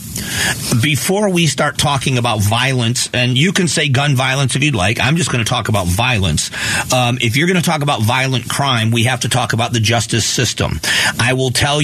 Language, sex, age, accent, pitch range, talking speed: English, male, 40-59, American, 115-140 Hz, 215 wpm